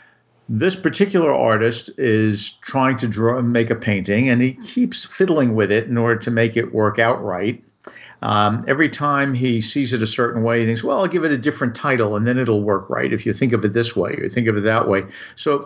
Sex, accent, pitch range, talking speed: male, American, 110-135 Hz, 240 wpm